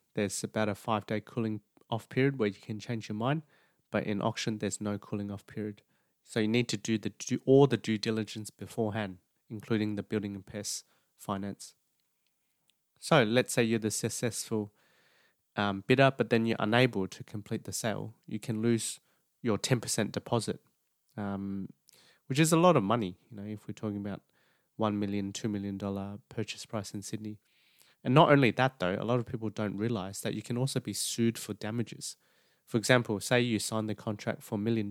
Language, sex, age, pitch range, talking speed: English, male, 20-39, 105-120 Hz, 190 wpm